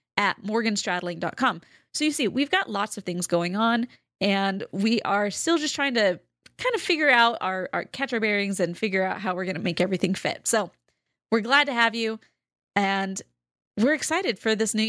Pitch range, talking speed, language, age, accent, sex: 195-260 Hz, 195 wpm, English, 20-39, American, female